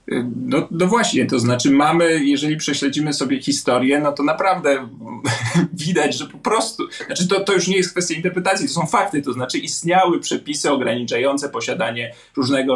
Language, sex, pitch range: Polish, male, 130-175 Hz